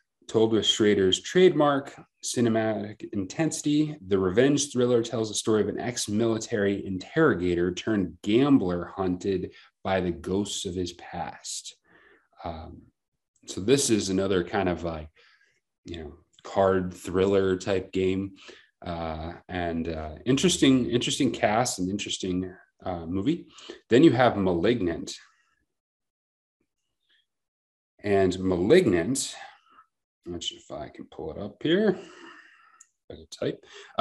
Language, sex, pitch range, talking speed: English, male, 90-120 Hz, 120 wpm